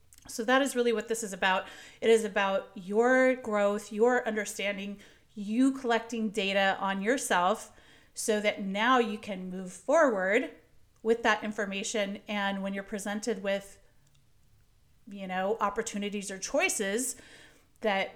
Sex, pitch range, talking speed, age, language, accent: female, 200-245 Hz, 135 wpm, 30-49, English, American